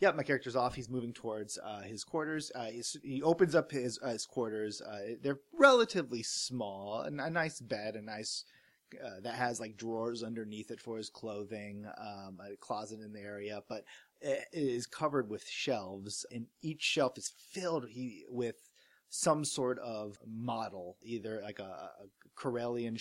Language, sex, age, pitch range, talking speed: English, male, 30-49, 105-125 Hz, 175 wpm